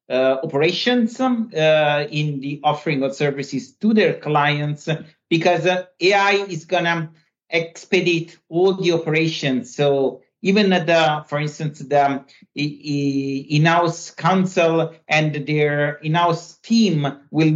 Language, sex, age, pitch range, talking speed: English, male, 50-69, 140-180 Hz, 115 wpm